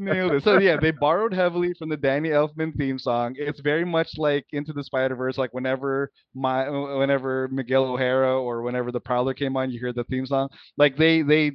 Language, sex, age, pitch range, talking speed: English, male, 20-39, 130-160 Hz, 215 wpm